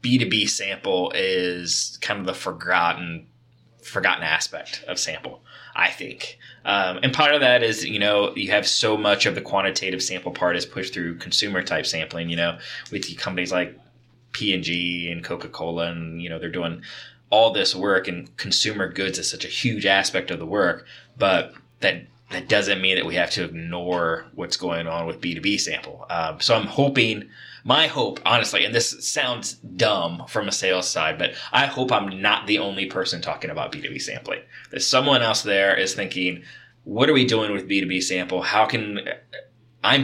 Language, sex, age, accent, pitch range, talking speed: English, male, 20-39, American, 90-110 Hz, 180 wpm